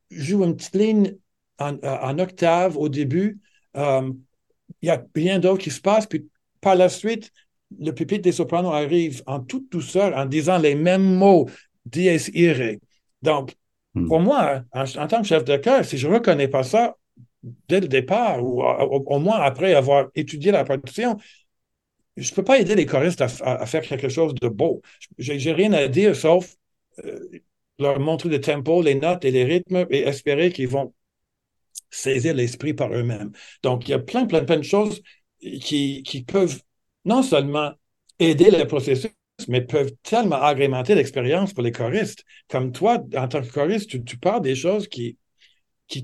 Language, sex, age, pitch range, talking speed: French, male, 60-79, 135-185 Hz, 185 wpm